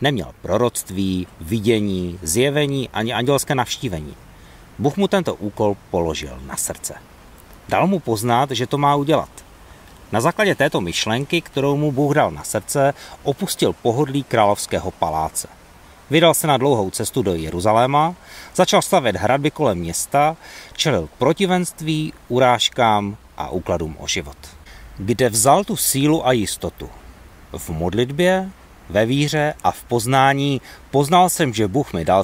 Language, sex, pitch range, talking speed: Czech, male, 90-150 Hz, 135 wpm